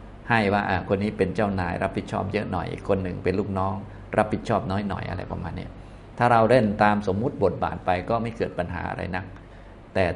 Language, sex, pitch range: Thai, male, 95-110 Hz